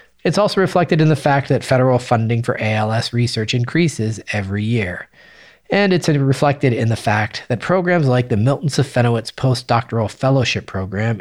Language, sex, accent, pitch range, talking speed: English, male, American, 110-140 Hz, 160 wpm